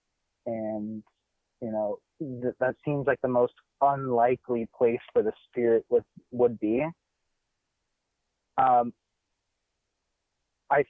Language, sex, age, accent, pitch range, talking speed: English, male, 30-49, American, 105-140 Hz, 105 wpm